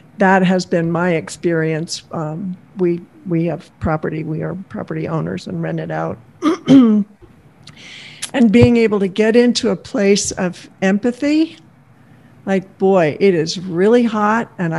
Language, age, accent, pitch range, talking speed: English, 60-79, American, 165-210 Hz, 140 wpm